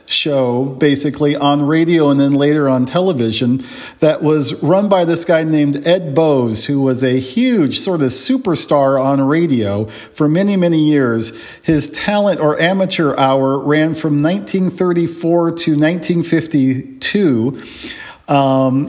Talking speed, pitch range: 135 wpm, 135-165 Hz